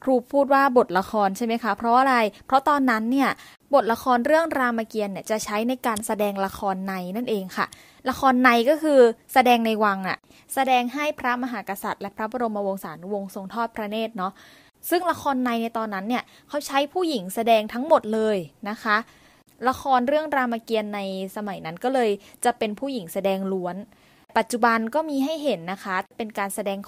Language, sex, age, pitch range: Thai, female, 20-39, 200-250 Hz